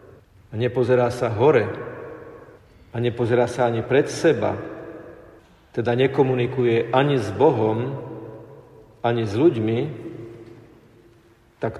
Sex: male